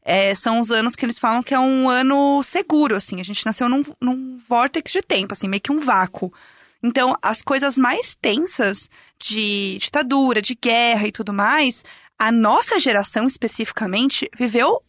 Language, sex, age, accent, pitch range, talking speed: Portuguese, female, 20-39, Brazilian, 215-285 Hz, 175 wpm